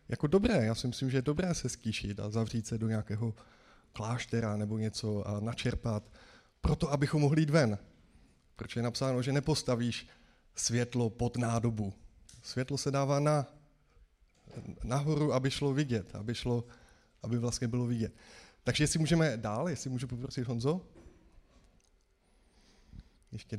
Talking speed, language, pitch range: 140 wpm, Czech, 110-135 Hz